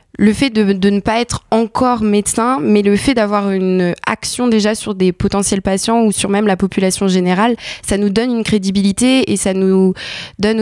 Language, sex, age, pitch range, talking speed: French, female, 20-39, 180-210 Hz, 200 wpm